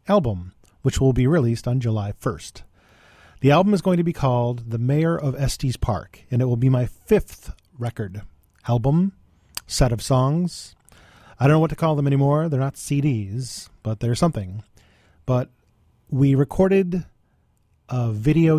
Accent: American